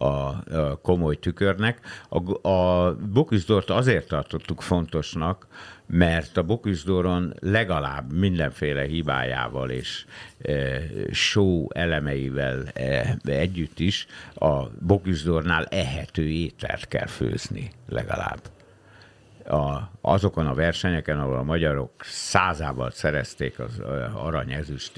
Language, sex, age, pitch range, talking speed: Hungarian, male, 60-79, 70-95 Hz, 95 wpm